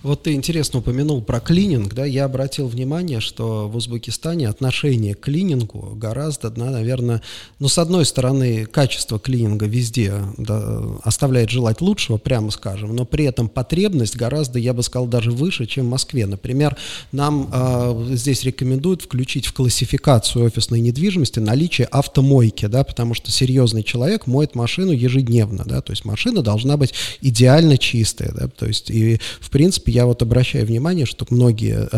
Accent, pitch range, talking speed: native, 115-140 Hz, 160 wpm